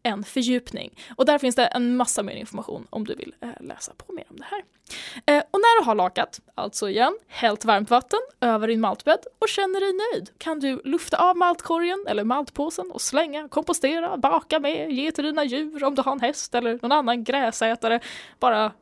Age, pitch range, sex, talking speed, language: 10-29, 230-300 Hz, female, 200 wpm, Swedish